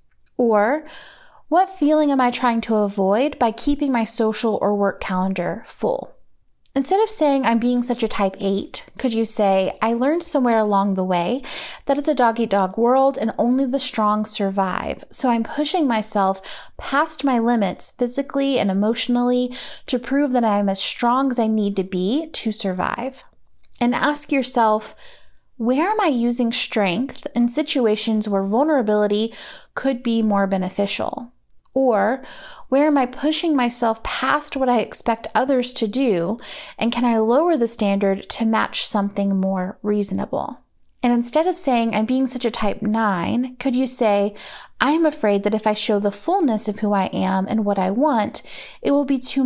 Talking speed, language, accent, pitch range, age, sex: 170 wpm, English, American, 205-270 Hz, 30-49, female